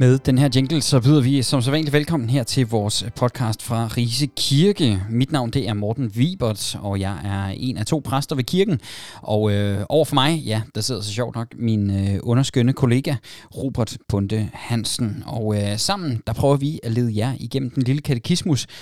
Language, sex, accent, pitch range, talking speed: Danish, male, native, 110-140 Hz, 200 wpm